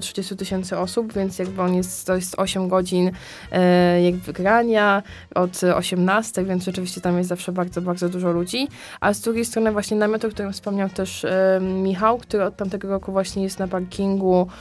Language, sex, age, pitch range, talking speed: Polish, female, 20-39, 185-205 Hz, 185 wpm